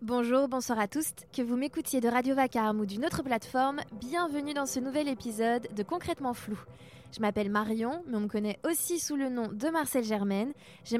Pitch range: 215-270 Hz